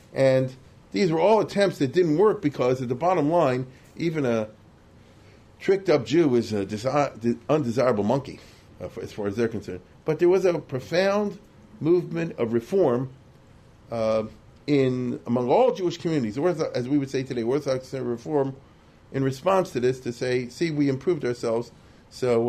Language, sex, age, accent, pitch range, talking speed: English, male, 40-59, American, 120-160 Hz, 175 wpm